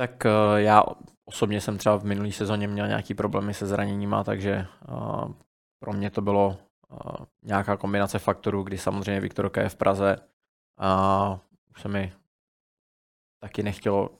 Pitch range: 100-105 Hz